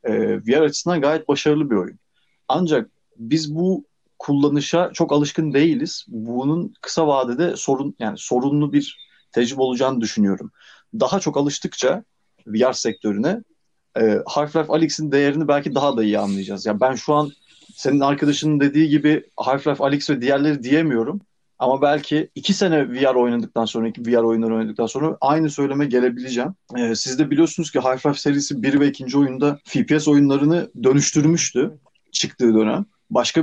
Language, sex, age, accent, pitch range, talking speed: Turkish, male, 30-49, native, 130-160 Hz, 145 wpm